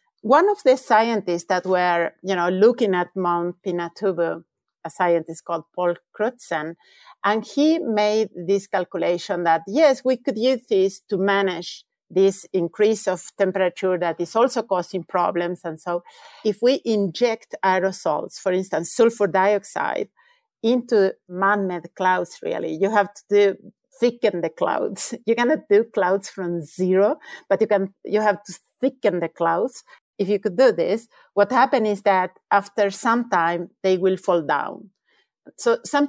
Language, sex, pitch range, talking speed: English, female, 180-230 Hz, 155 wpm